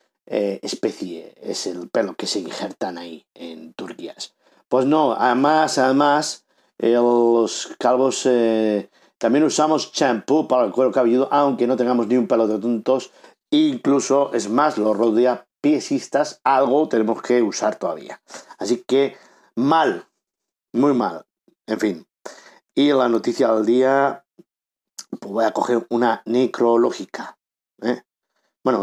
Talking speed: 130 wpm